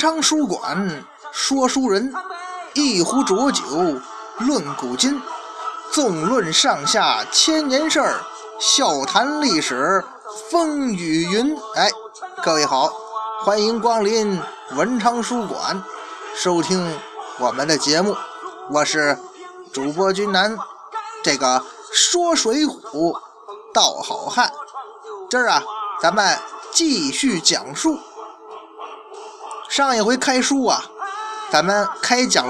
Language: Chinese